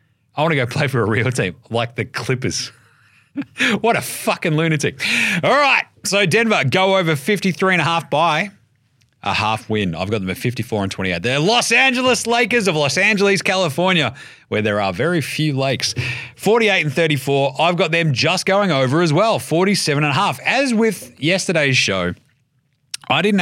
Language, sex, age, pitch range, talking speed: English, male, 30-49, 120-165 Hz, 175 wpm